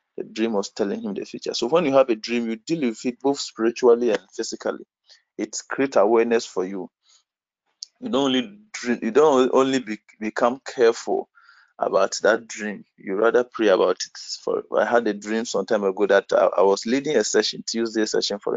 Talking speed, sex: 195 wpm, male